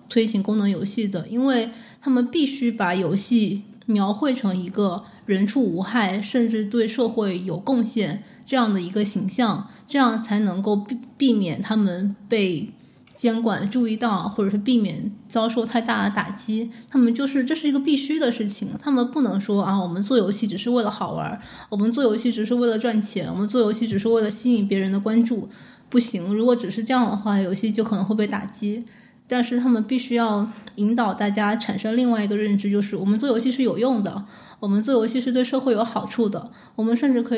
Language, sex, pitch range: Chinese, female, 205-240 Hz